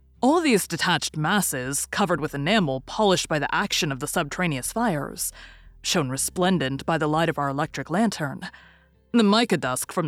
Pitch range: 140-195 Hz